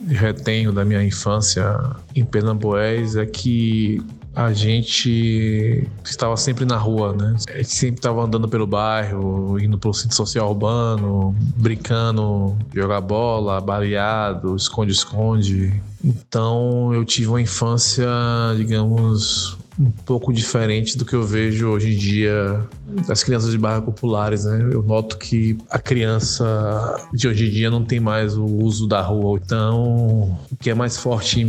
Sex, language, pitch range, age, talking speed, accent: male, Portuguese, 105-115 Hz, 20-39, 150 wpm, Brazilian